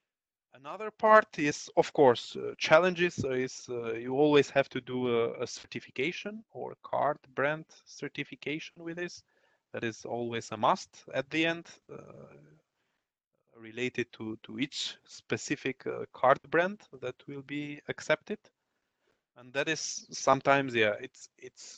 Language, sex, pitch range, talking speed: English, male, 115-165 Hz, 140 wpm